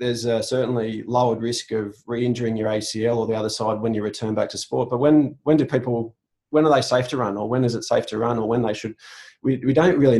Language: English